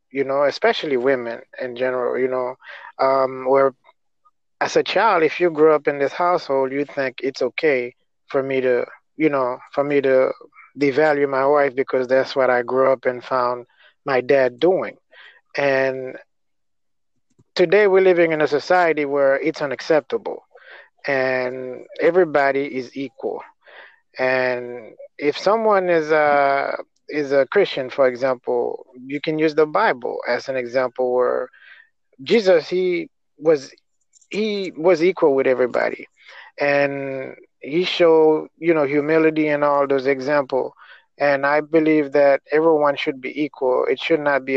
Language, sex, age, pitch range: English, male, 30-49, 130-165 Hz